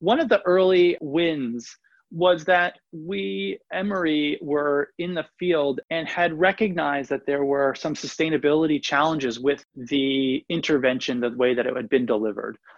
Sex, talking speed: male, 150 wpm